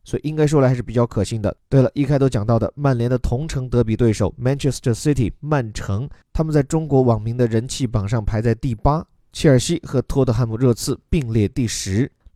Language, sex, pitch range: Chinese, male, 115-140 Hz